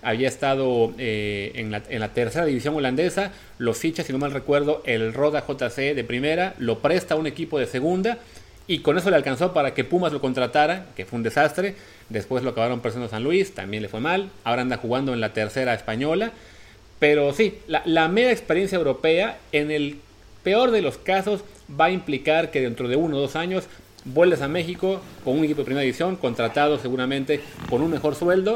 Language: Spanish